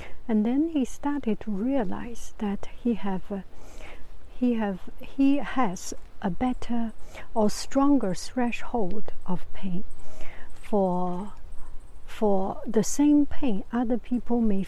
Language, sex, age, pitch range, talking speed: English, female, 60-79, 185-235 Hz, 120 wpm